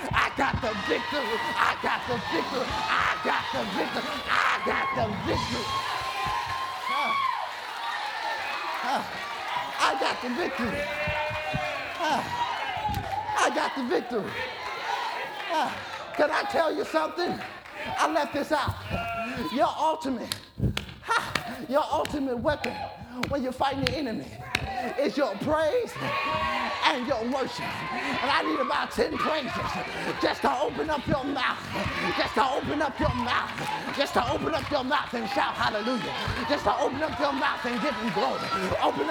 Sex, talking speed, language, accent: male, 140 wpm, English, American